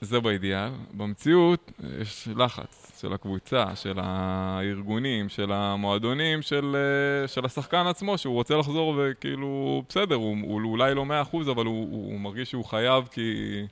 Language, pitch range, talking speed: Hebrew, 100-135 Hz, 150 wpm